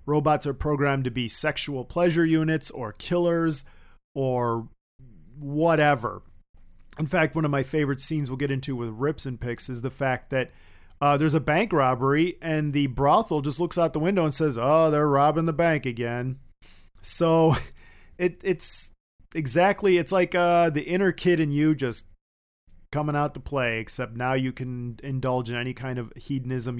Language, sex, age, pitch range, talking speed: English, male, 40-59, 115-155 Hz, 170 wpm